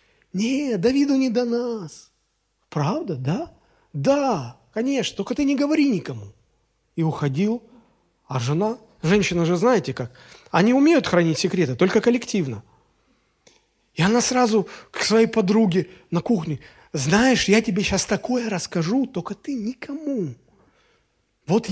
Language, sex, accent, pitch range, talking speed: Russian, male, native, 160-230 Hz, 125 wpm